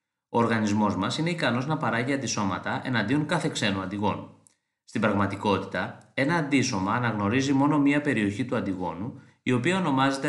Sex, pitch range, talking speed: male, 100-140 Hz, 145 wpm